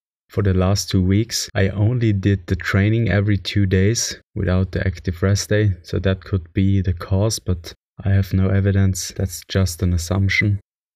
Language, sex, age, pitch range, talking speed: English, male, 20-39, 95-105 Hz, 180 wpm